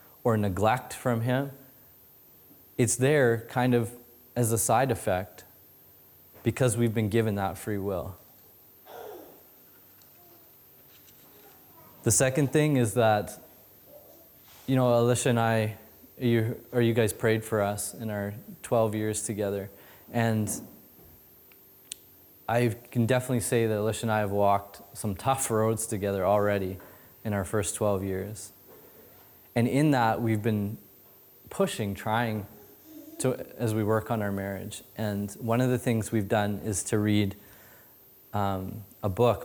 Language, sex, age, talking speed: English, male, 20-39, 135 wpm